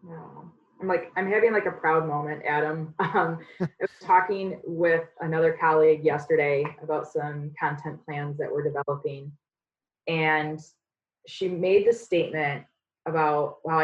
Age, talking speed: 20-39, 135 wpm